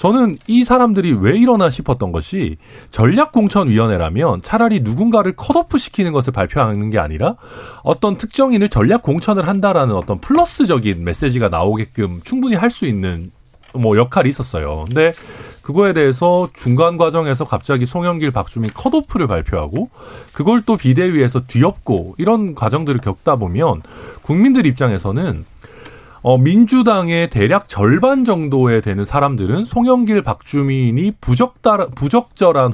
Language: Korean